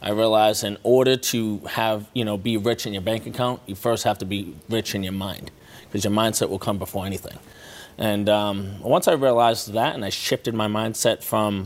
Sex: male